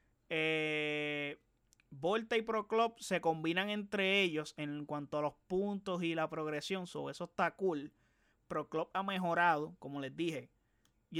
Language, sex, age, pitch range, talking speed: Spanish, male, 20-39, 150-195 Hz, 155 wpm